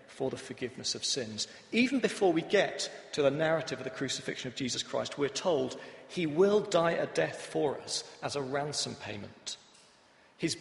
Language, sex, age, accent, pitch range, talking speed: English, male, 40-59, British, 135-180 Hz, 180 wpm